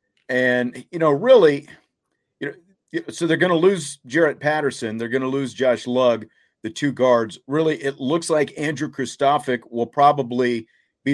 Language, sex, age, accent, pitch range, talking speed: English, male, 40-59, American, 120-150 Hz, 165 wpm